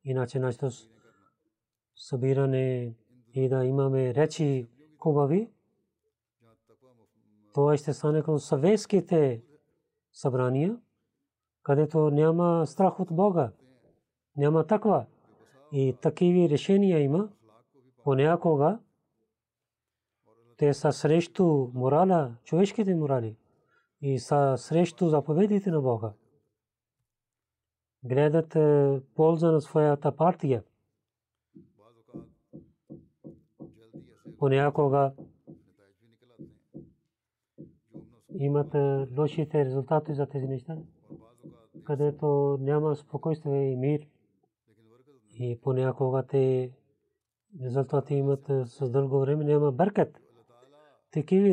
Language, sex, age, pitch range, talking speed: Bulgarian, male, 40-59, 125-155 Hz, 80 wpm